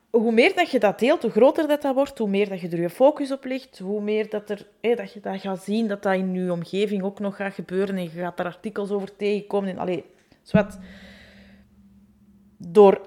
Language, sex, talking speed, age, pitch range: Dutch, female, 190 wpm, 30-49, 190-225 Hz